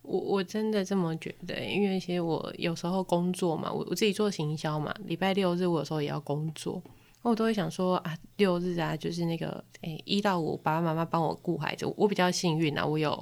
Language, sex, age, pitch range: Chinese, female, 20-39, 165-205 Hz